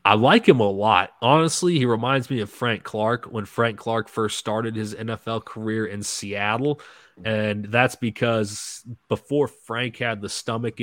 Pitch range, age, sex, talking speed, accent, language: 105-120 Hz, 20-39, male, 165 wpm, American, English